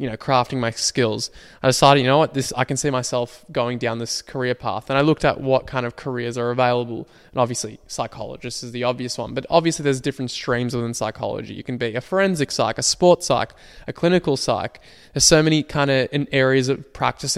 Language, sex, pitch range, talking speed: English, male, 120-140 Hz, 220 wpm